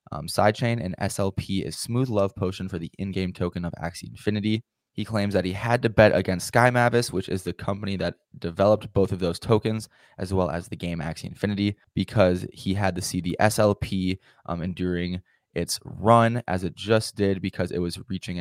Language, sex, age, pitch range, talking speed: English, male, 20-39, 95-110 Hz, 200 wpm